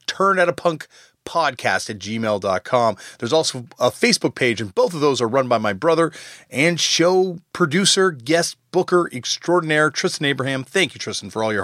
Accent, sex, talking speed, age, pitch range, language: American, male, 180 wpm, 30-49, 135-180 Hz, English